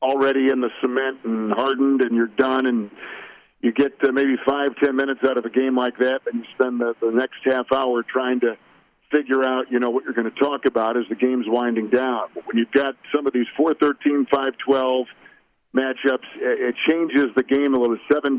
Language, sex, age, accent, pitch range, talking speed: English, male, 50-69, American, 120-140 Hz, 210 wpm